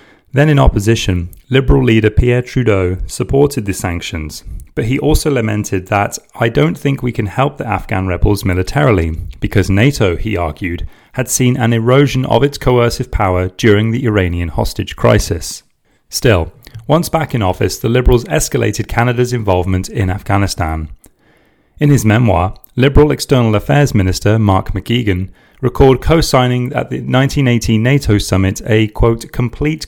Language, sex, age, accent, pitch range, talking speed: English, male, 30-49, British, 95-125 Hz, 145 wpm